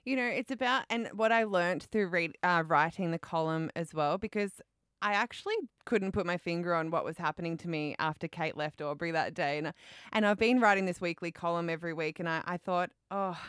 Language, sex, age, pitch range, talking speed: English, female, 20-39, 165-200 Hz, 220 wpm